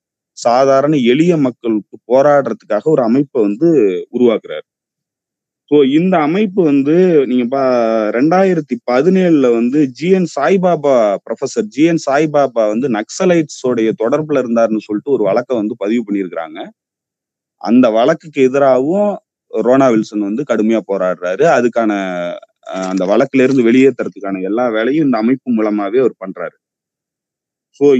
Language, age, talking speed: Tamil, 30-49, 115 wpm